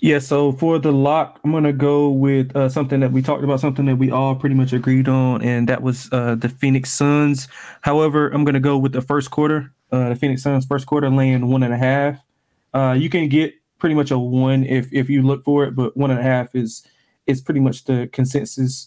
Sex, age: male, 20-39